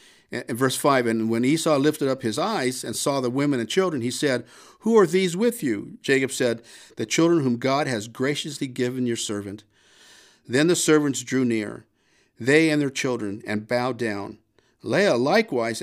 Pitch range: 110-145 Hz